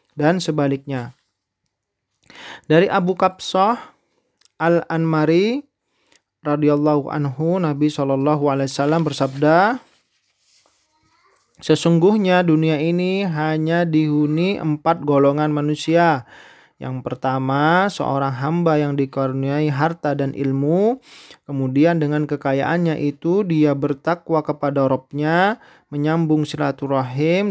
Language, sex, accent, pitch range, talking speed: Indonesian, male, native, 140-165 Hz, 85 wpm